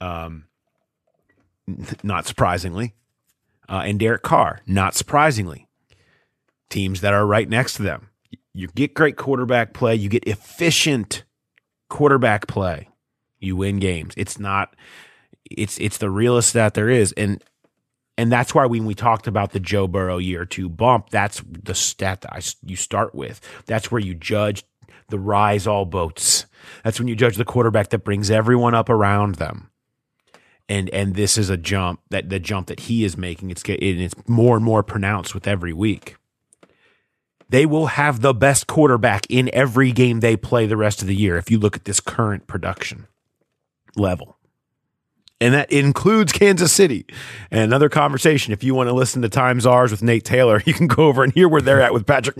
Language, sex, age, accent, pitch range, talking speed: English, male, 30-49, American, 100-130 Hz, 180 wpm